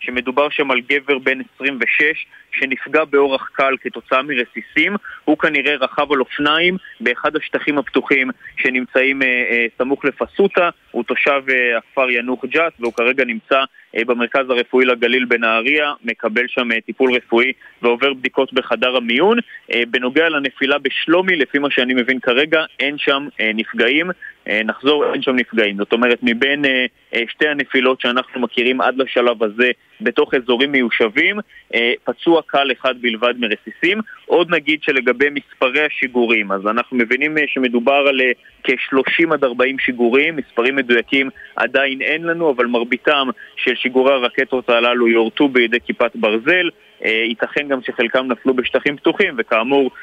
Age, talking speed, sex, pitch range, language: 20-39, 145 wpm, male, 120-140 Hz, Hebrew